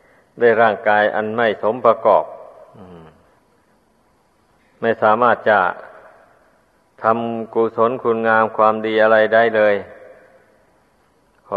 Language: Thai